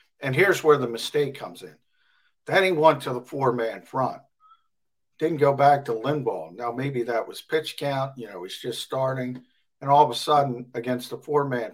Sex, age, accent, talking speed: male, 50-69, American, 195 wpm